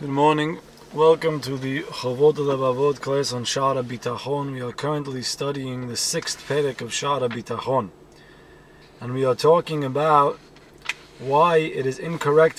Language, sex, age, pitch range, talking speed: English, male, 30-49, 135-170 Hz, 145 wpm